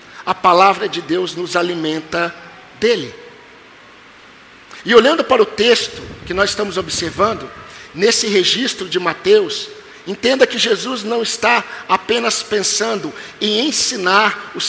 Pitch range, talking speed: 215-260 Hz, 125 wpm